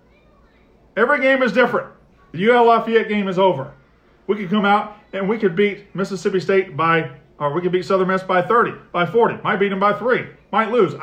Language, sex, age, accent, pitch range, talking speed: English, male, 40-59, American, 180-240 Hz, 205 wpm